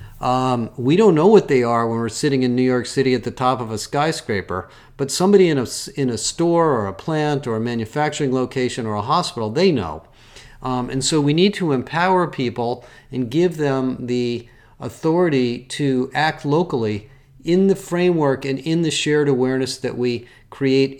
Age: 40-59